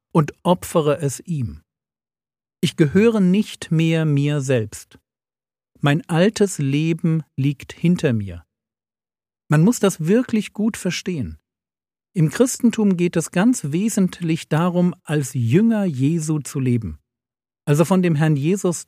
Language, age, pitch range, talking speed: German, 50-69, 135-180 Hz, 125 wpm